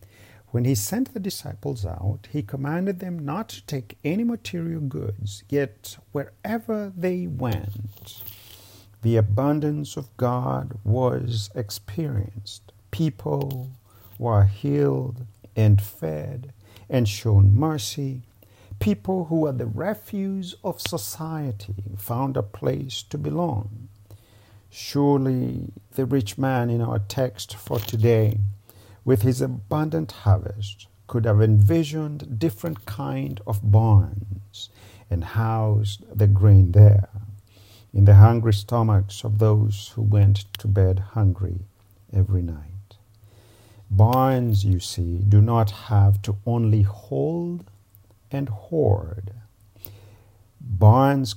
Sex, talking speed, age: male, 110 wpm, 50-69